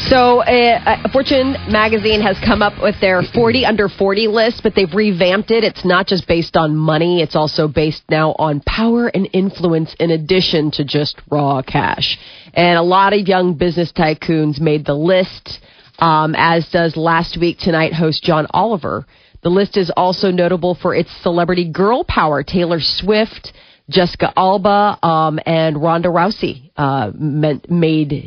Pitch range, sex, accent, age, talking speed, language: 160-200 Hz, female, American, 30-49, 160 wpm, English